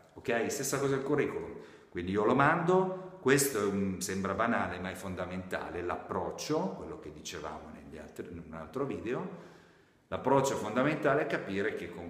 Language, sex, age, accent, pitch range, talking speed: Italian, male, 50-69, native, 85-125 Hz, 160 wpm